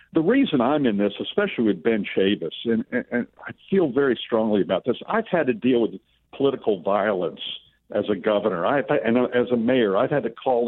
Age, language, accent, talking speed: 60-79, English, American, 200 wpm